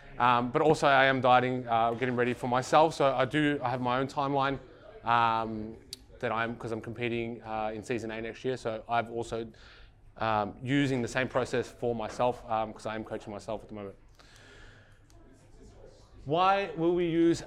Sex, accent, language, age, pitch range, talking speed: male, Australian, English, 20-39, 115-140 Hz, 190 wpm